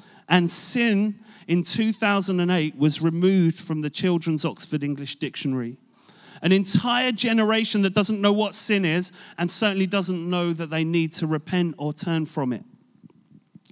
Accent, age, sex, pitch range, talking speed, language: British, 40-59, male, 160-205 Hz, 150 wpm, English